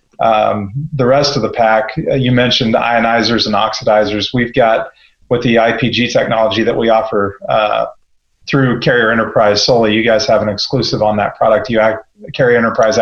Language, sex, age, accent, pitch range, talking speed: English, male, 40-59, American, 110-135 Hz, 165 wpm